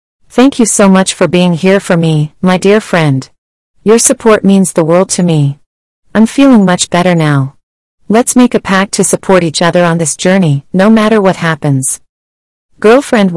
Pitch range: 160-210 Hz